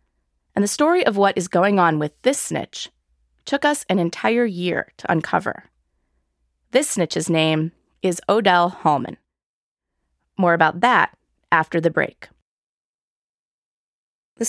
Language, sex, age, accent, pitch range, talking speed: English, female, 20-39, American, 155-215 Hz, 130 wpm